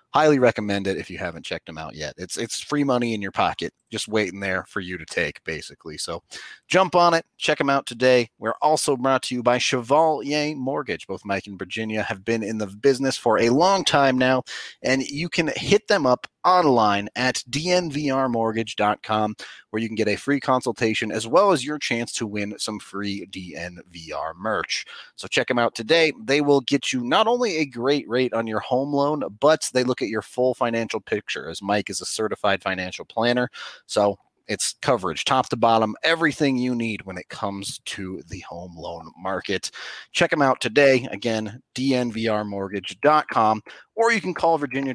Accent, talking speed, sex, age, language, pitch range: American, 190 wpm, male, 30-49, English, 105-140 Hz